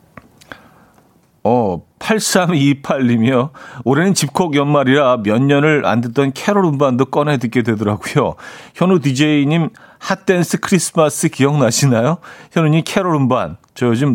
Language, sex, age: Korean, male, 40-59